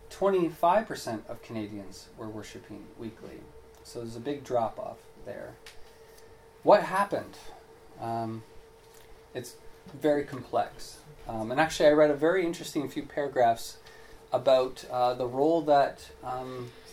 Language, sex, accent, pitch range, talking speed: English, male, American, 125-165 Hz, 120 wpm